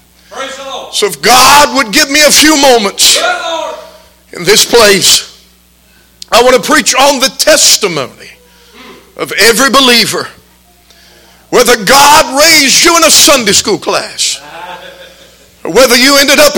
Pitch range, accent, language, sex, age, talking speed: 260-325 Hz, American, English, male, 50-69, 130 wpm